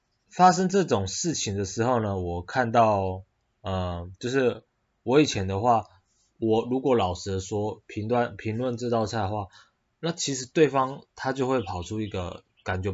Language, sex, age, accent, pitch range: Chinese, male, 20-39, native, 100-140 Hz